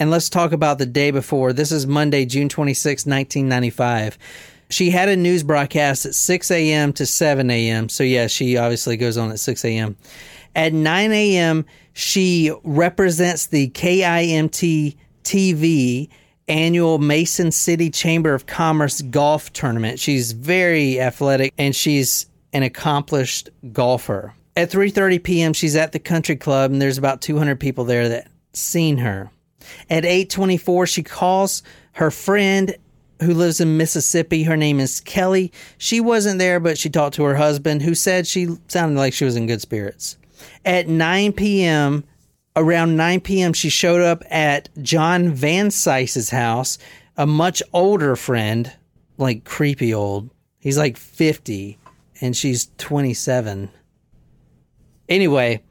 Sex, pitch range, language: male, 135-170 Hz, English